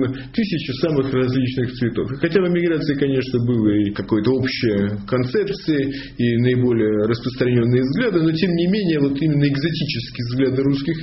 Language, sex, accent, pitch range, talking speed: Russian, male, native, 125-155 Hz, 145 wpm